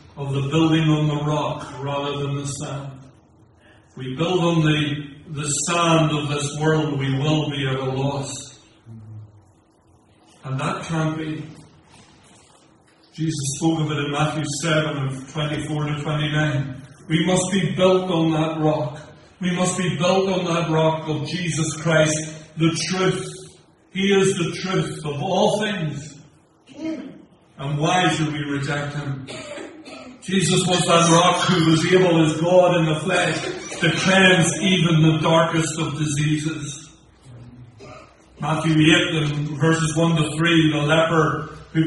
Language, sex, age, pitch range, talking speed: English, male, 40-59, 150-180 Hz, 145 wpm